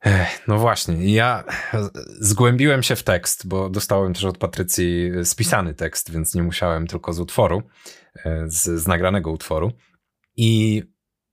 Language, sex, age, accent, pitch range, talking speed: Polish, male, 30-49, native, 90-115 Hz, 135 wpm